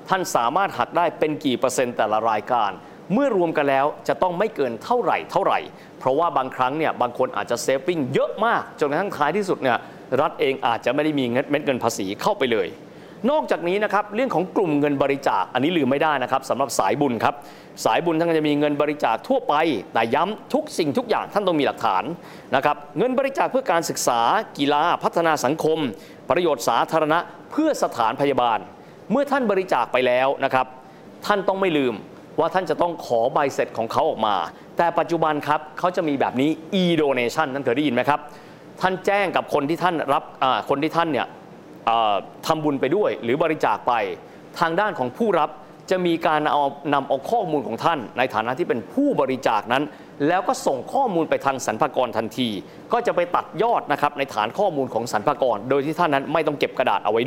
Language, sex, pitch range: Thai, male, 140-185 Hz